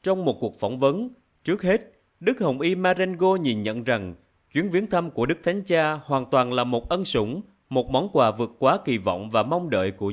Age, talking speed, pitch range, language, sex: 30-49, 225 wpm, 110-170 Hz, Vietnamese, male